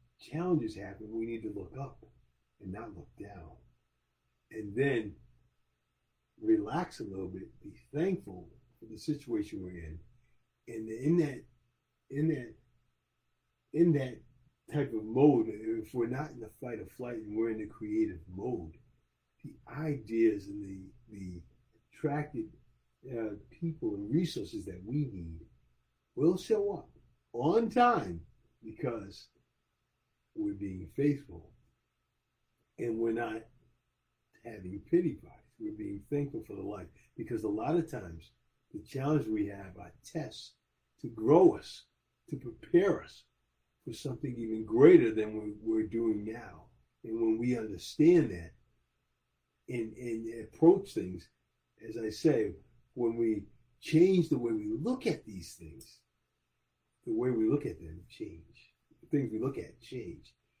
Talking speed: 140 wpm